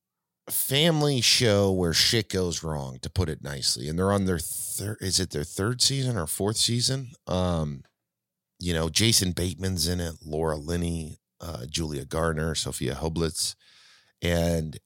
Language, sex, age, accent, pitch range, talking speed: English, male, 30-49, American, 75-95 Hz, 155 wpm